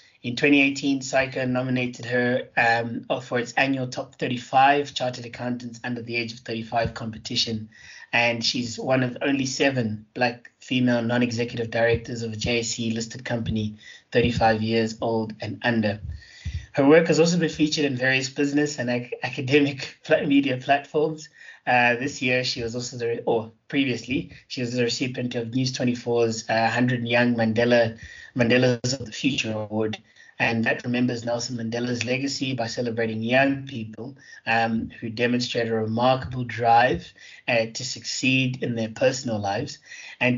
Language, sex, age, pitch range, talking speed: English, male, 20-39, 115-130 Hz, 150 wpm